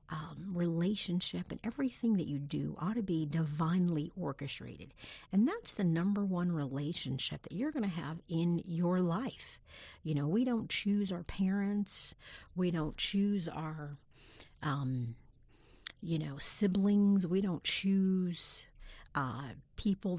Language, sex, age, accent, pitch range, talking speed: English, female, 50-69, American, 155-205 Hz, 135 wpm